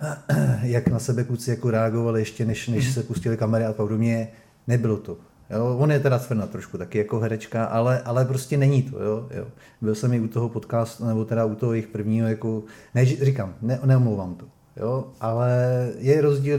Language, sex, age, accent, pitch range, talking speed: Czech, male, 30-49, native, 110-125 Hz, 195 wpm